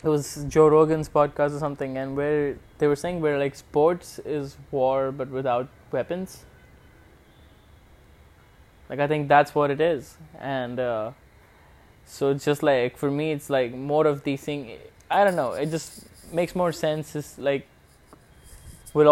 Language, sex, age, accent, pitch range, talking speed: English, male, 20-39, Indian, 130-170 Hz, 165 wpm